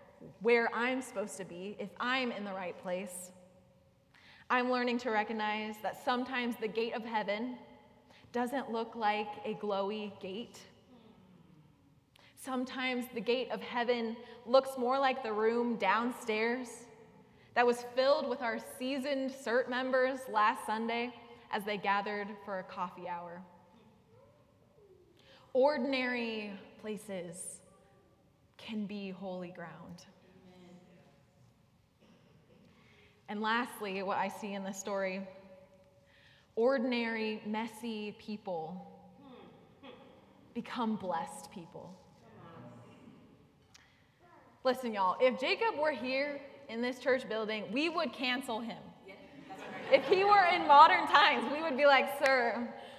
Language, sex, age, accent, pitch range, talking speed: English, female, 20-39, American, 195-255 Hz, 115 wpm